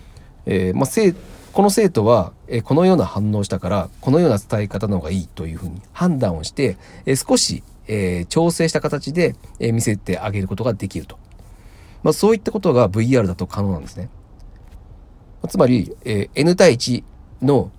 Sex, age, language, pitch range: male, 40-59, Japanese, 95-125 Hz